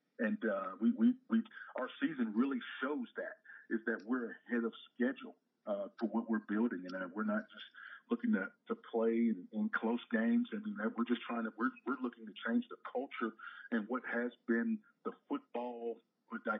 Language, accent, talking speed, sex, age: English, American, 205 wpm, male, 50-69